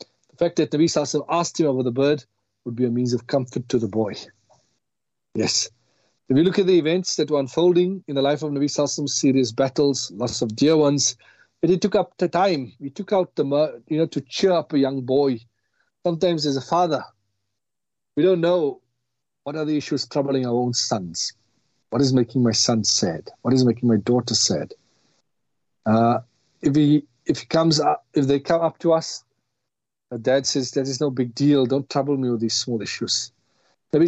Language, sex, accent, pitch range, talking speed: English, male, South African, 125-150 Hz, 205 wpm